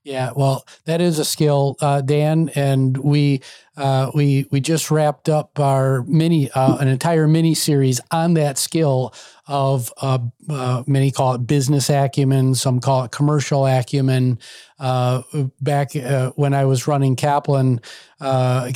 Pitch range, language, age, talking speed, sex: 130-150 Hz, English, 40-59, 155 wpm, male